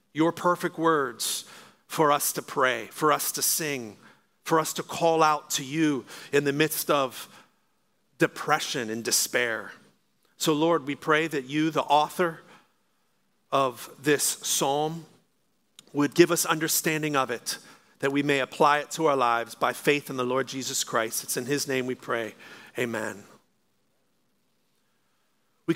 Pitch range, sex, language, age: 155-190 Hz, male, English, 40-59